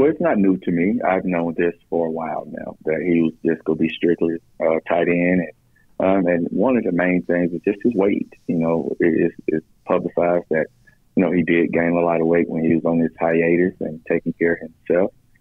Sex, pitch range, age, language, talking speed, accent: male, 85-90 Hz, 30-49, English, 240 wpm, American